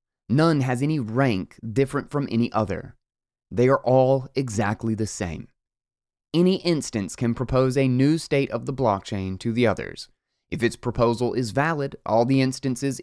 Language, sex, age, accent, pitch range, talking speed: English, male, 20-39, American, 110-150 Hz, 160 wpm